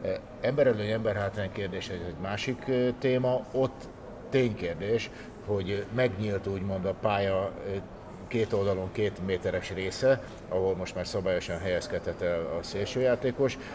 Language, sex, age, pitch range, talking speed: Hungarian, male, 60-79, 95-120 Hz, 115 wpm